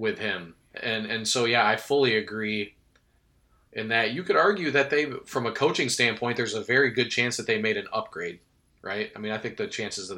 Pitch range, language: 110-120 Hz, English